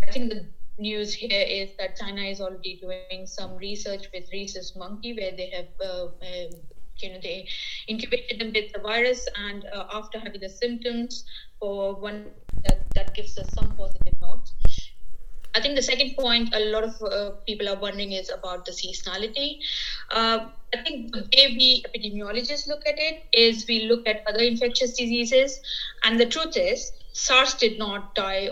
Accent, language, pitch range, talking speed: Indian, English, 195-245 Hz, 180 wpm